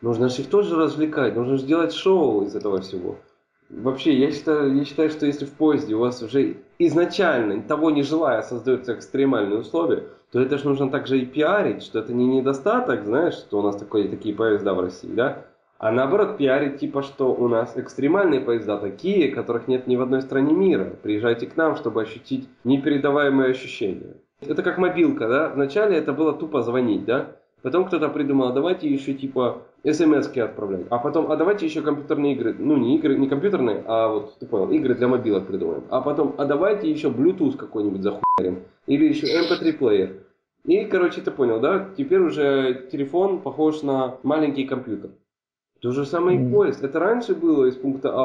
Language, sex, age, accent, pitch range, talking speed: Russian, male, 20-39, native, 130-160 Hz, 180 wpm